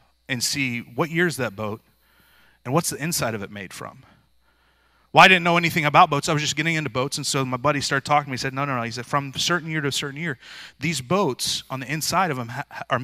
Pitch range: 120-170 Hz